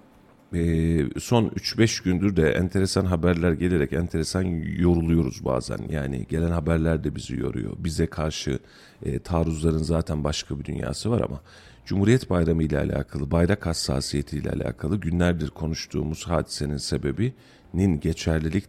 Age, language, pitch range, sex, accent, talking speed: 40-59, Turkish, 75-90 Hz, male, native, 130 wpm